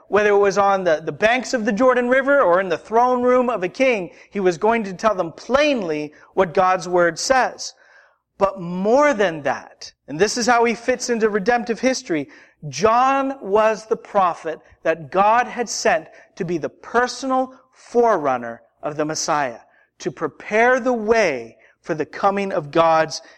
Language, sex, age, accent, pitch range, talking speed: English, male, 40-59, American, 170-240 Hz, 175 wpm